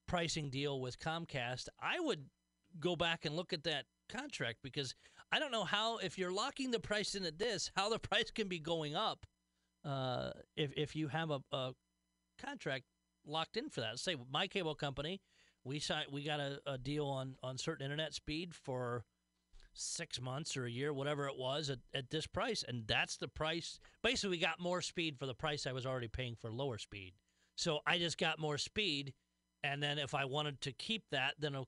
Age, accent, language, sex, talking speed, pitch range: 40-59, American, English, male, 210 wpm, 120-160 Hz